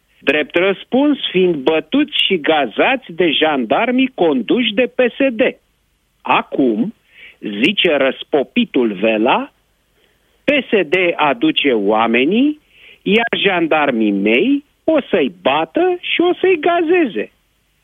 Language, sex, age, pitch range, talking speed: Romanian, male, 50-69, 145-245 Hz, 95 wpm